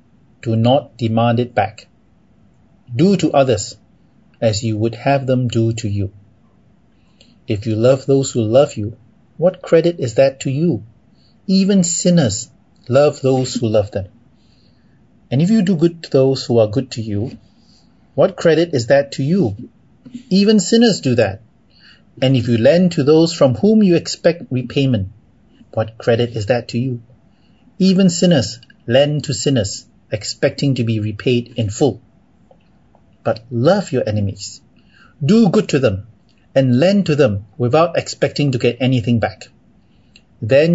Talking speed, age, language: 155 wpm, 30-49, English